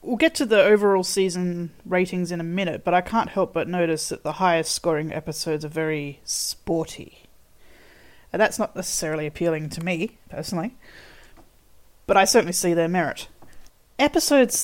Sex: female